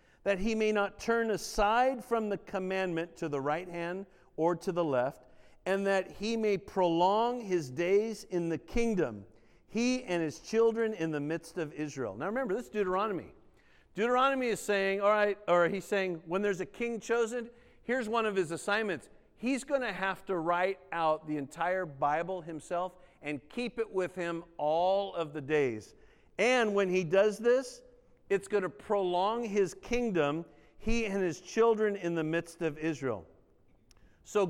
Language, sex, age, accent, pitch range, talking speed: English, male, 50-69, American, 170-225 Hz, 175 wpm